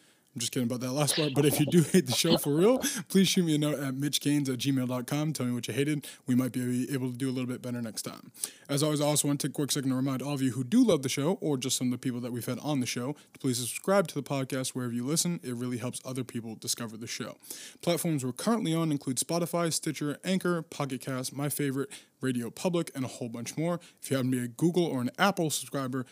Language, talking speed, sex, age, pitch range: English, 280 wpm, male, 20-39, 125-150 Hz